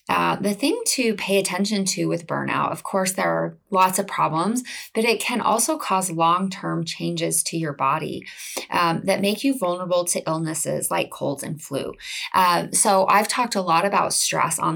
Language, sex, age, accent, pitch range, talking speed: English, female, 20-39, American, 175-215 Hz, 185 wpm